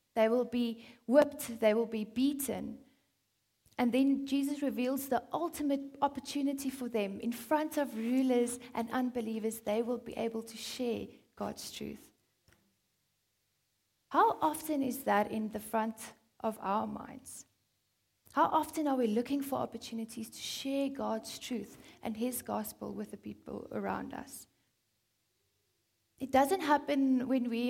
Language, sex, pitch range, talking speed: English, female, 200-260 Hz, 140 wpm